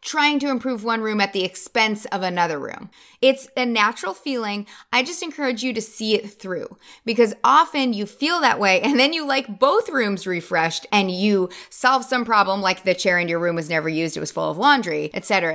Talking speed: 220 wpm